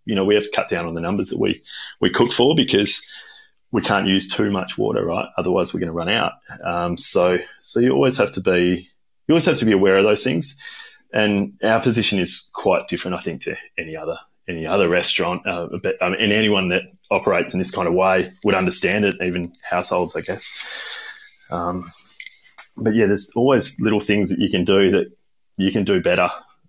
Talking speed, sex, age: 215 wpm, male, 20-39